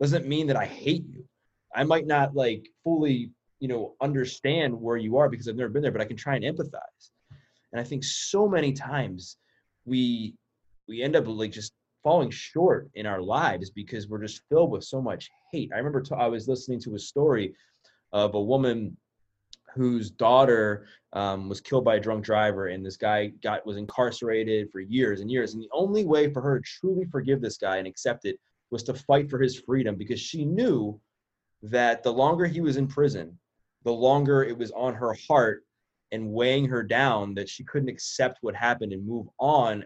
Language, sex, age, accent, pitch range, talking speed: English, male, 20-39, American, 105-135 Hz, 200 wpm